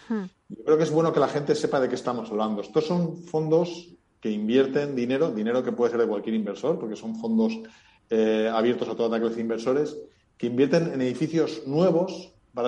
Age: 40-59